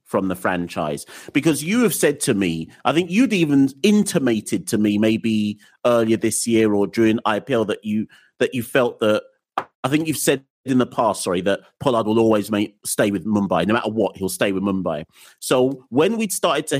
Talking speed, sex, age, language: 205 wpm, male, 40-59, English